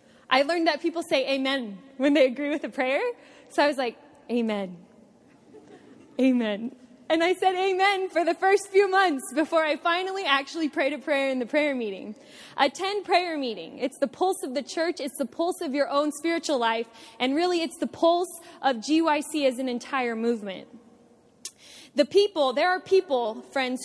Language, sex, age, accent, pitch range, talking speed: English, female, 20-39, American, 250-345 Hz, 180 wpm